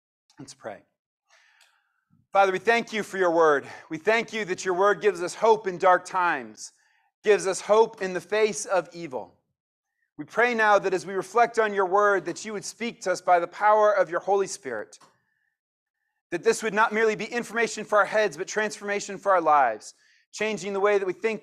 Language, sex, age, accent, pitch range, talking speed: English, male, 30-49, American, 190-240 Hz, 205 wpm